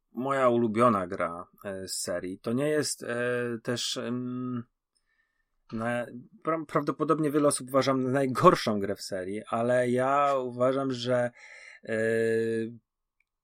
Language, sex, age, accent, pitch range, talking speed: Polish, male, 30-49, native, 110-135 Hz, 120 wpm